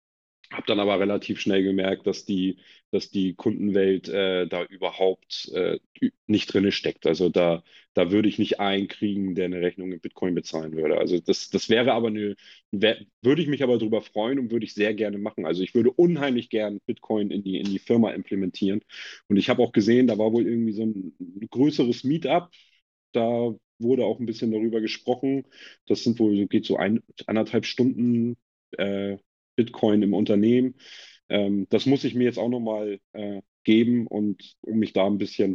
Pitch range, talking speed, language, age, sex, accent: 95-115 Hz, 190 wpm, German, 30-49, male, German